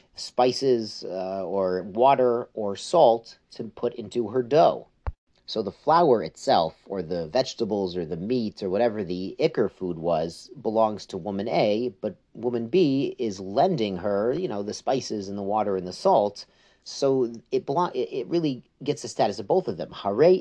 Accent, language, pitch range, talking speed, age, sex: American, English, 100-125 Hz, 175 wpm, 40-59, male